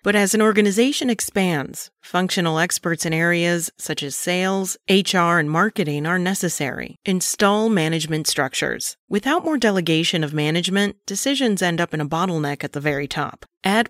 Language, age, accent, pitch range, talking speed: English, 30-49, American, 160-210 Hz, 155 wpm